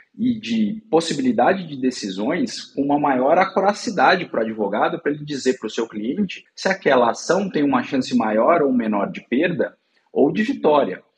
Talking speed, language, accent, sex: 175 wpm, Portuguese, Brazilian, male